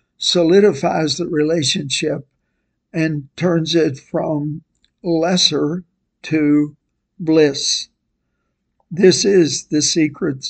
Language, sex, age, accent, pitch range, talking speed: English, male, 60-79, American, 150-175 Hz, 80 wpm